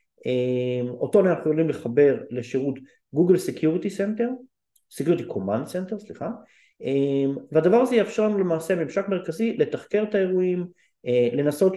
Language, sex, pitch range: Hebrew, male, 125-180 Hz